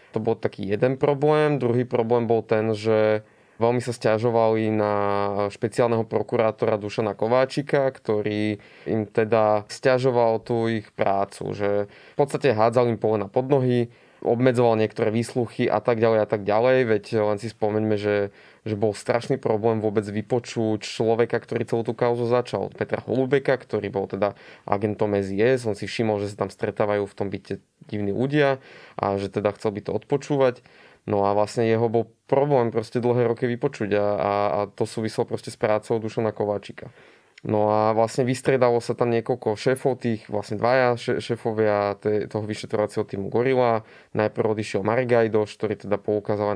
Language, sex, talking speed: Slovak, male, 165 wpm